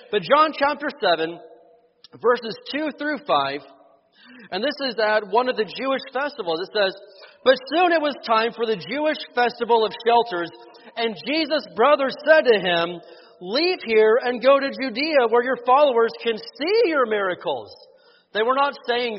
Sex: male